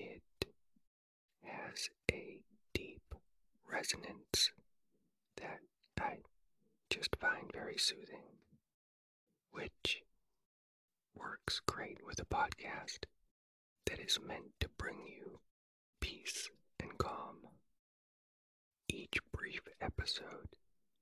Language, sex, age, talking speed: English, male, 40-59, 80 wpm